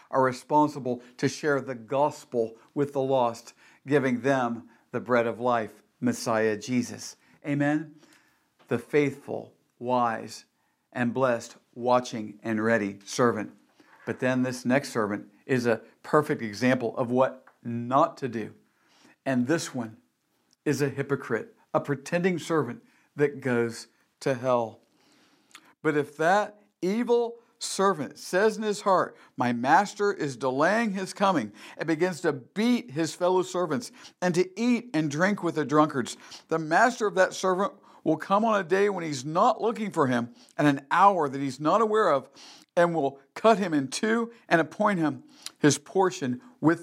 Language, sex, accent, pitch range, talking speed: English, male, American, 125-190 Hz, 155 wpm